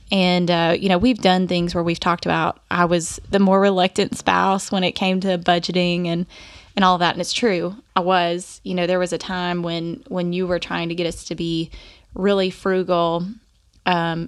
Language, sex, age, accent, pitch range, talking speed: English, female, 20-39, American, 175-210 Hz, 210 wpm